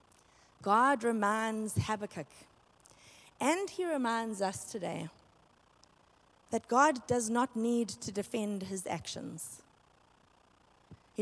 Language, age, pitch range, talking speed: English, 30-49, 210-285 Hz, 95 wpm